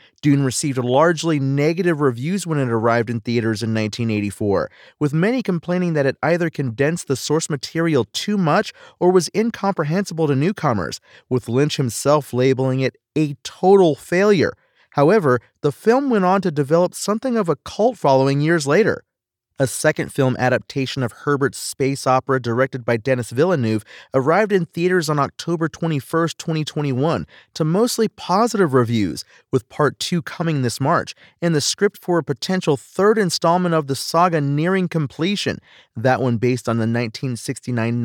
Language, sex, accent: English, male, American